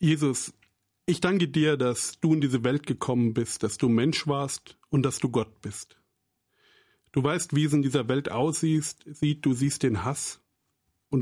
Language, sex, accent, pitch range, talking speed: English, male, German, 115-150 Hz, 175 wpm